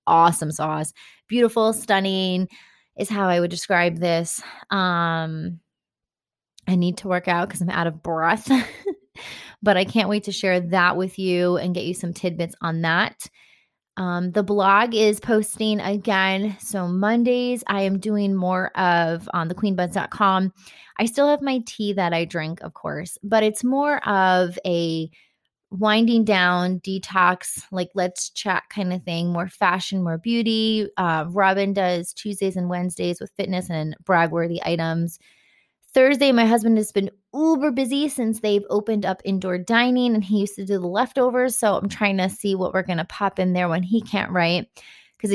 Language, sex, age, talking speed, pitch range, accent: English, female, 20-39, 170 wpm, 175-215 Hz, American